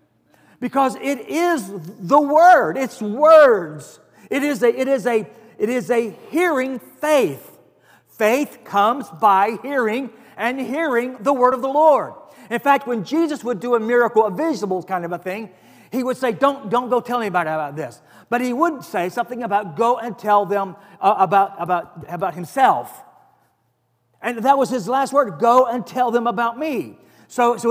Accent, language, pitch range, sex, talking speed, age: American, English, 200-260 Hz, male, 175 wpm, 40-59